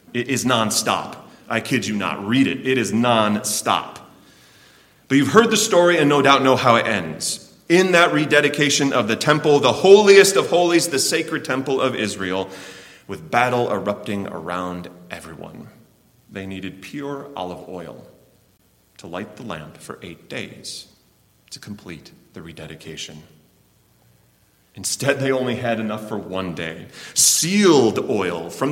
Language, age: English, 30-49